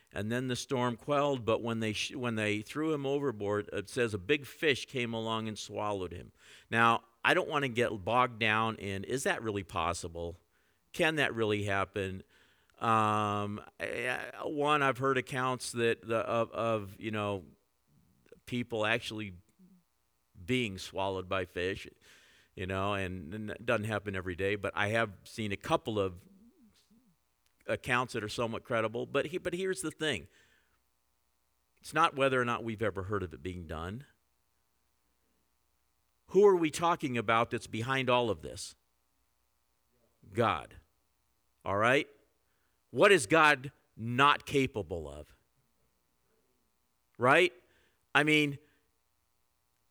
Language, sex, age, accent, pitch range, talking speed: English, male, 50-69, American, 90-125 Hz, 145 wpm